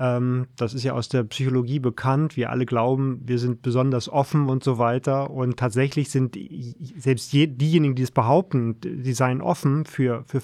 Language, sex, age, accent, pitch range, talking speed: German, male, 30-49, German, 125-140 Hz, 175 wpm